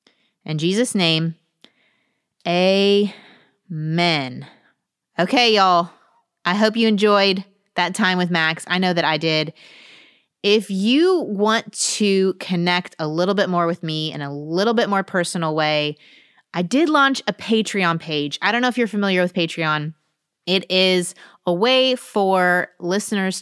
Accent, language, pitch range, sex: American, English, 165-205 Hz, female